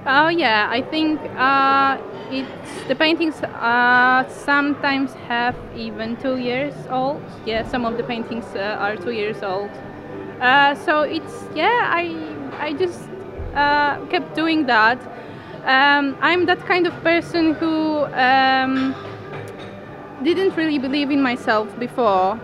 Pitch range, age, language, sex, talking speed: 225-285 Hz, 20-39, English, female, 135 wpm